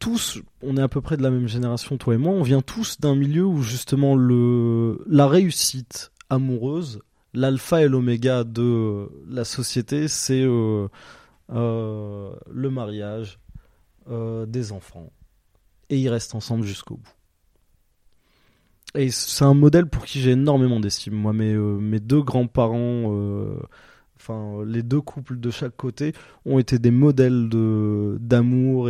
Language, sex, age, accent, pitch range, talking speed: French, male, 20-39, French, 110-130 Hz, 150 wpm